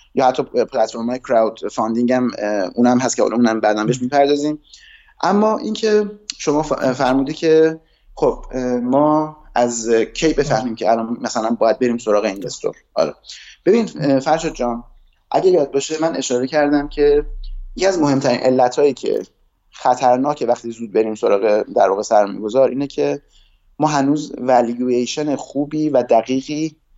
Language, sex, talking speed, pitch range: Persian, male, 140 wpm, 120-150 Hz